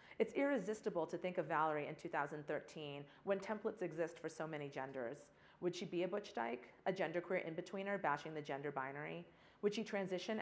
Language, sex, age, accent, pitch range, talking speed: English, female, 40-59, American, 155-200 Hz, 180 wpm